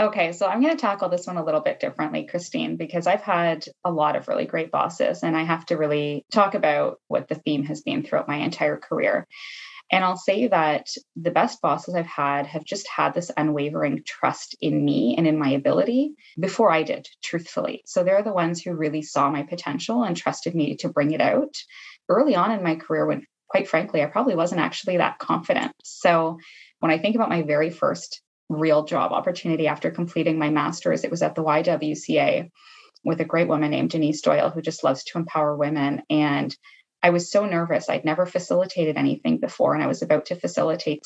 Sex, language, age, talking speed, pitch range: female, English, 20-39, 210 wpm, 150-180 Hz